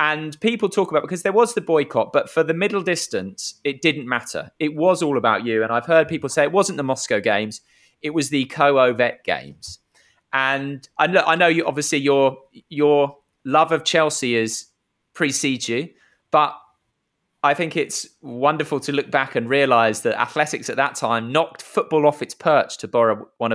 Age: 20-39